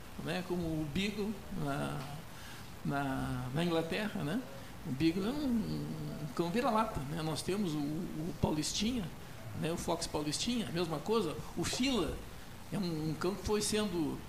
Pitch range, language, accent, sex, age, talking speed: 155-210 Hz, Portuguese, Brazilian, male, 60-79, 160 wpm